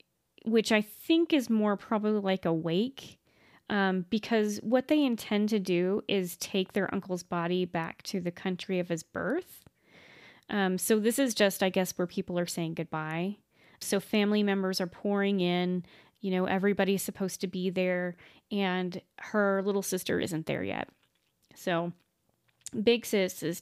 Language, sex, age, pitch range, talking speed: English, female, 20-39, 180-215 Hz, 160 wpm